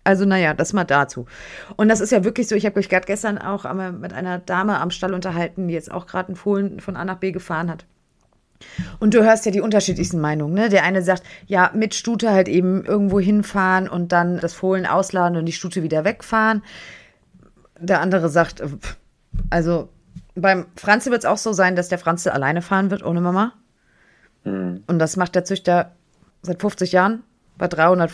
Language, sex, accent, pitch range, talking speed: German, female, German, 170-200 Hz, 200 wpm